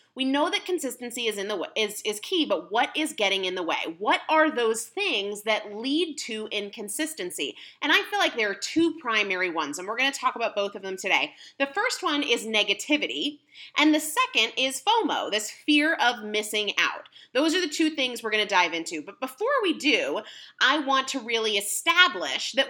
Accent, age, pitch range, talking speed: American, 30-49, 205-310 Hz, 210 wpm